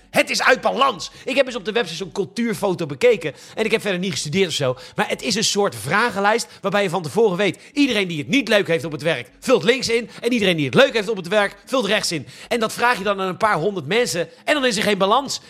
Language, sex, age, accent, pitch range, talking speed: Dutch, male, 40-59, Dutch, 190-240 Hz, 280 wpm